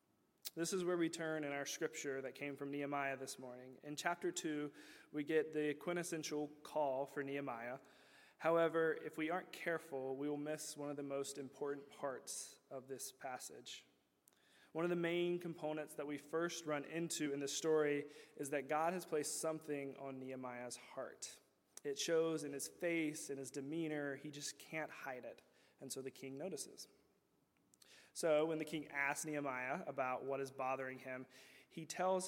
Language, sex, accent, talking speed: English, male, American, 175 wpm